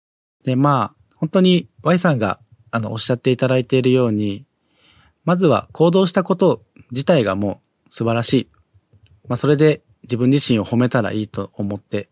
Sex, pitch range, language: male, 105-135 Hz, Japanese